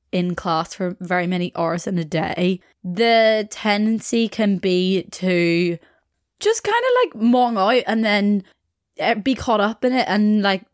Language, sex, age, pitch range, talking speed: English, female, 20-39, 170-220 Hz, 155 wpm